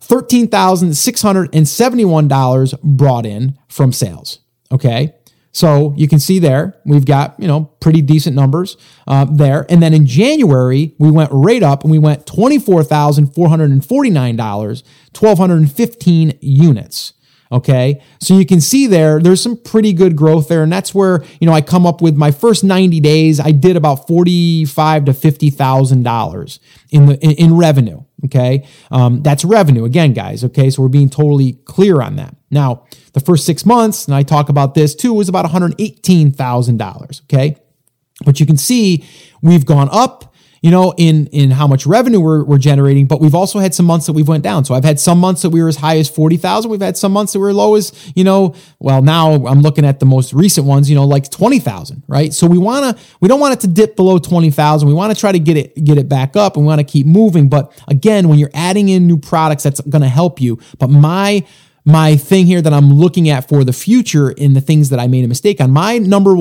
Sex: male